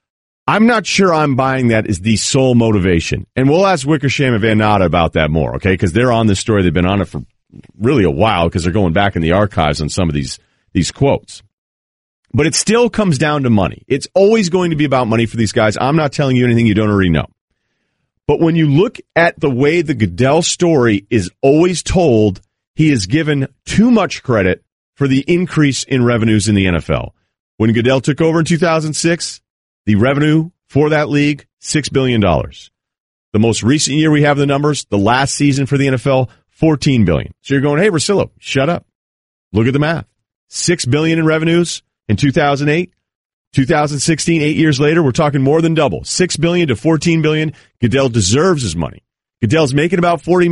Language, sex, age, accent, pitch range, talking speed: English, male, 40-59, American, 105-155 Hz, 200 wpm